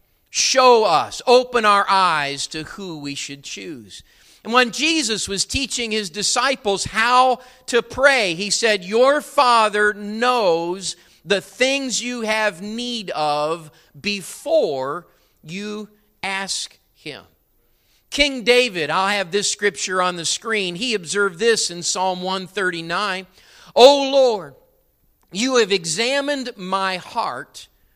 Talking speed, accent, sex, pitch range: 120 wpm, American, male, 175-235 Hz